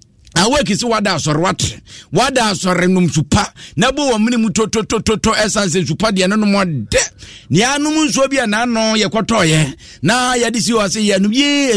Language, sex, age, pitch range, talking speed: English, male, 50-69, 160-225 Hz, 185 wpm